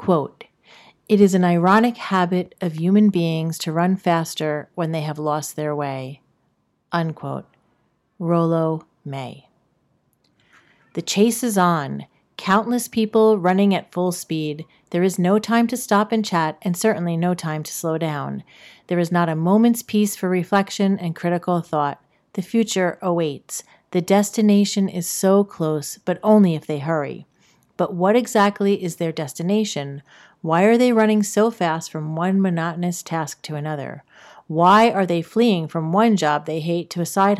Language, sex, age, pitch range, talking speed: English, female, 40-59, 165-200 Hz, 160 wpm